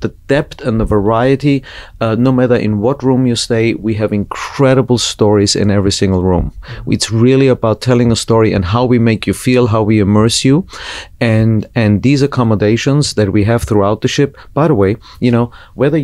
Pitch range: 105-135 Hz